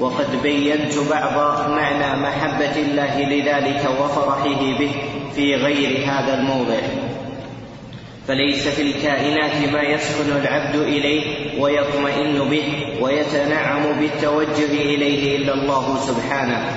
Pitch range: 140-145 Hz